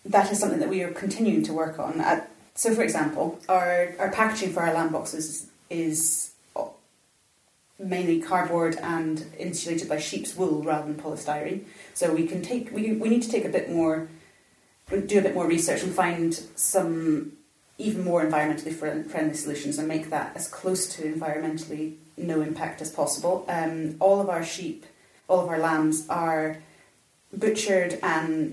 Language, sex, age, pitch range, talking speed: English, female, 30-49, 155-185 Hz, 165 wpm